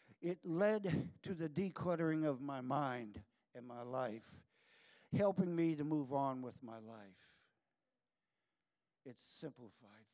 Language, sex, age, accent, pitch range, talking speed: English, male, 60-79, American, 120-195 Hz, 125 wpm